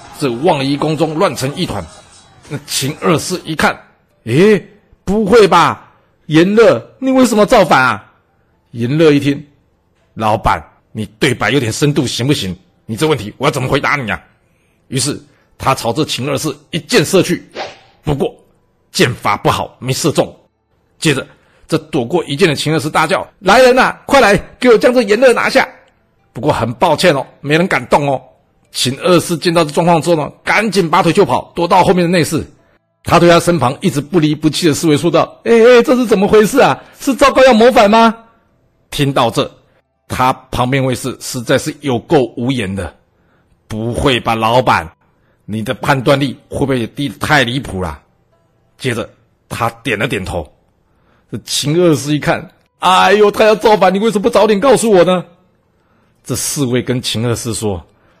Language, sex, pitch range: Chinese, male, 125-180 Hz